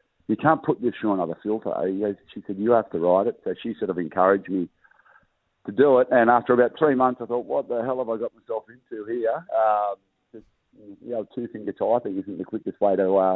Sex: male